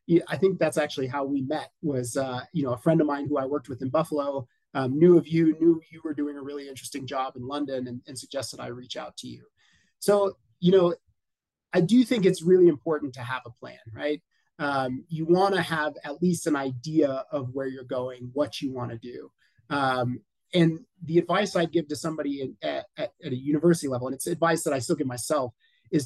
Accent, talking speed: American, 220 wpm